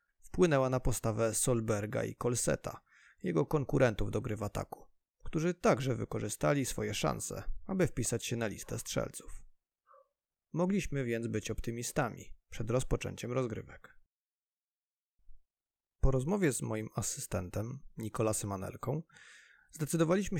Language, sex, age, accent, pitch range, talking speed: Polish, male, 30-49, native, 105-135 Hz, 110 wpm